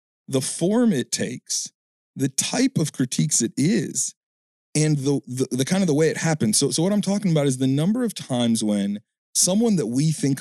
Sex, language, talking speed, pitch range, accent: male, English, 210 wpm, 120-165 Hz, American